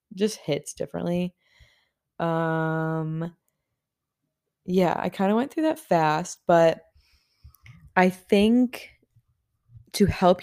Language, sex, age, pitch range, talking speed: English, female, 20-39, 150-180 Hz, 100 wpm